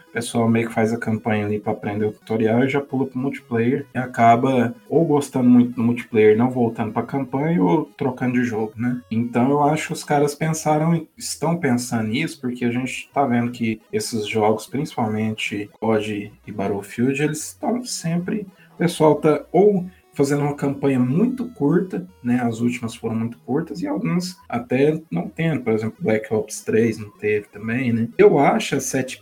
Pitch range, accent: 110-150 Hz, Brazilian